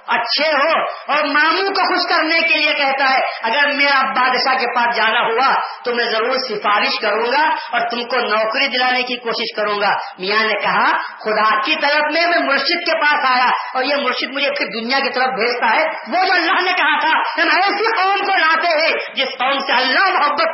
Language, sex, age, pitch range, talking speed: Urdu, female, 50-69, 220-300 Hz, 205 wpm